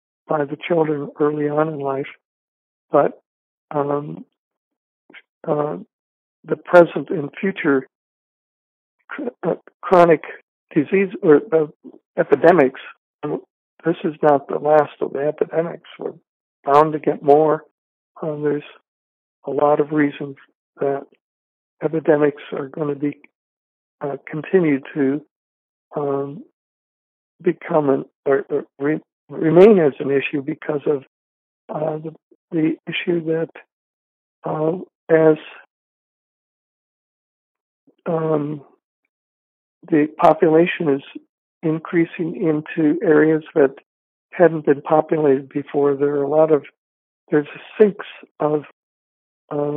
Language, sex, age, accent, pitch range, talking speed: English, male, 60-79, American, 140-160 Hz, 105 wpm